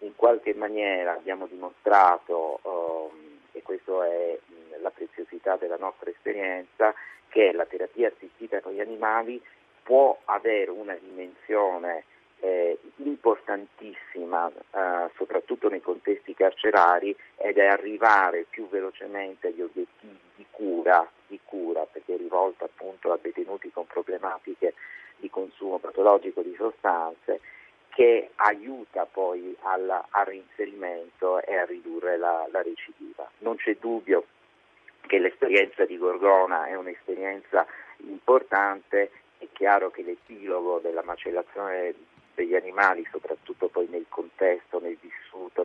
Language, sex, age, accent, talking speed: Italian, male, 50-69, native, 120 wpm